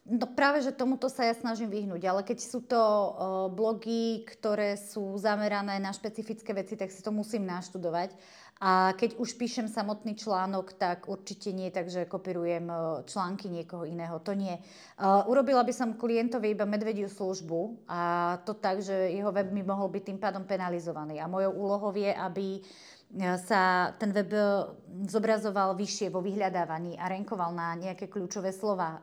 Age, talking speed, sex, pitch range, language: 30-49, 165 wpm, female, 190-230 Hz, Slovak